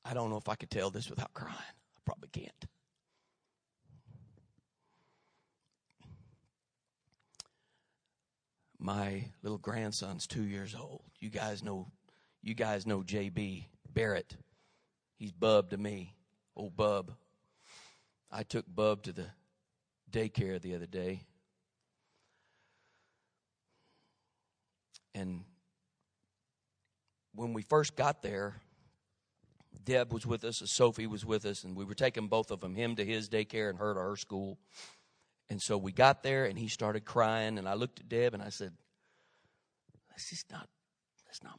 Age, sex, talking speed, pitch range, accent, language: 40-59, male, 135 wpm, 100-125 Hz, American, English